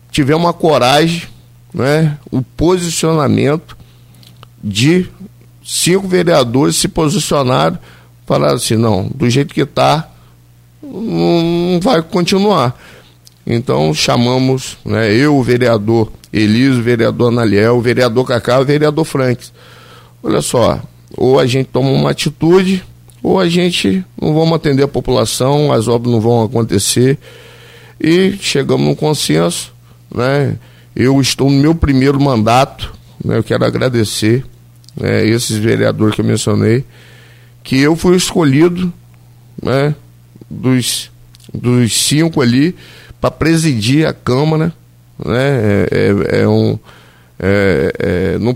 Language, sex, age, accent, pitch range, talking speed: Portuguese, male, 50-69, Brazilian, 115-145 Hz, 120 wpm